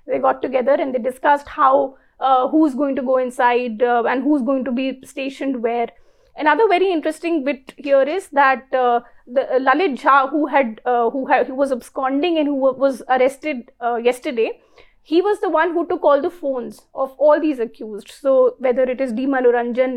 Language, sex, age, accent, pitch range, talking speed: English, female, 30-49, Indian, 255-310 Hz, 200 wpm